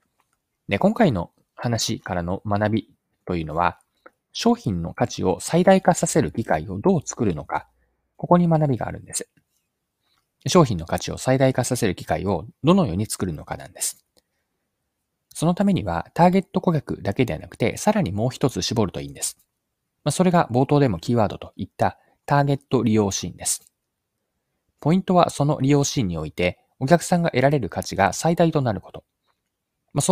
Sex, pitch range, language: male, 95-145 Hz, Japanese